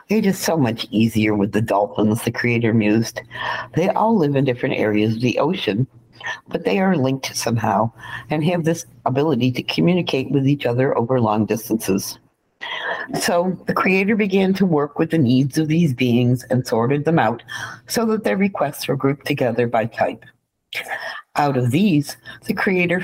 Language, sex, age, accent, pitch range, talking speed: English, female, 60-79, American, 120-160 Hz, 175 wpm